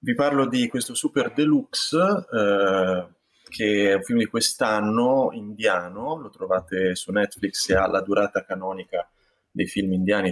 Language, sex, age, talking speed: Italian, male, 30-49, 150 wpm